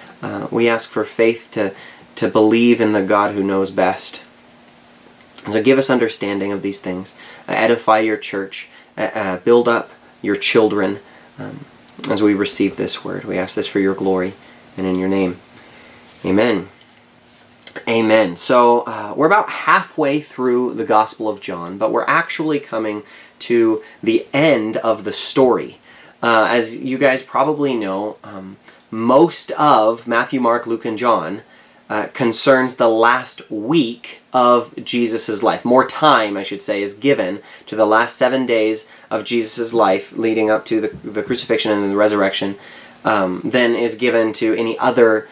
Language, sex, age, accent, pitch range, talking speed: English, male, 30-49, American, 100-120 Hz, 160 wpm